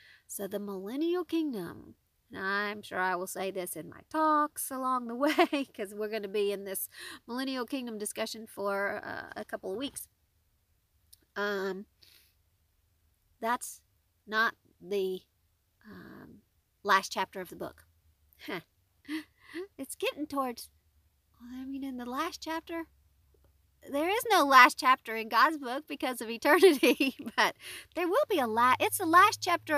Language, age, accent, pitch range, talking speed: English, 40-59, American, 180-280 Hz, 150 wpm